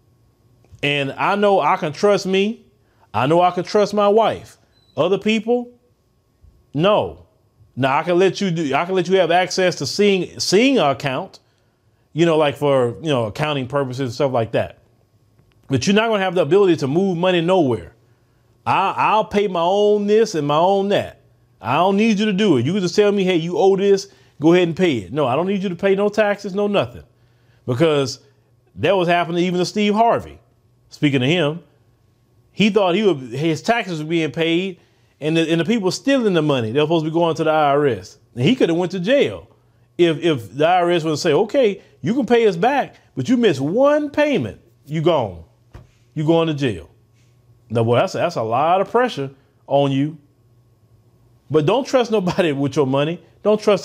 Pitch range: 120-195 Hz